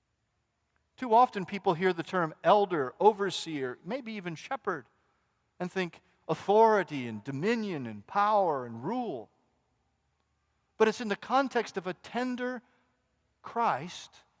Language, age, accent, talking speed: English, 50-69, American, 120 wpm